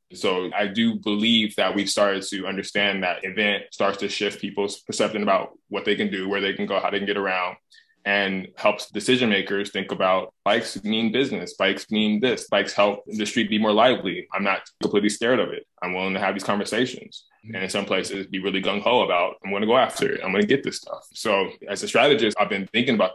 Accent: American